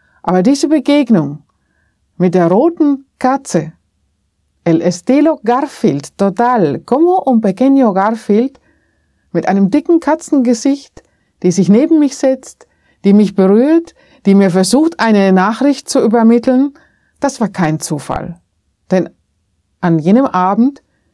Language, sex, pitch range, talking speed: German, female, 175-235 Hz, 120 wpm